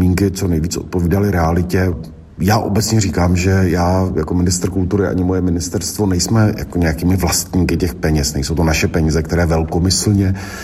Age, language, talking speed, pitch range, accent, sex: 50-69, Czech, 150 wpm, 80-95 Hz, native, male